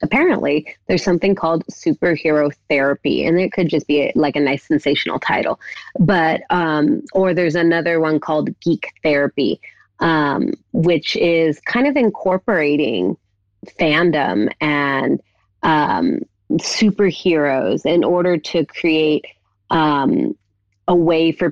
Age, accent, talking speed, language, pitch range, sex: 30-49, American, 120 wpm, English, 145-170 Hz, female